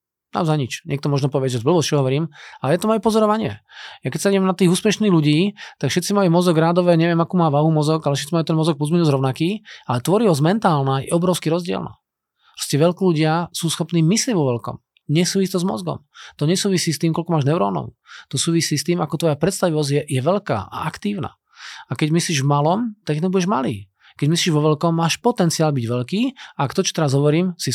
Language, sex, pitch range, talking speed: Slovak, male, 140-180 Hz, 215 wpm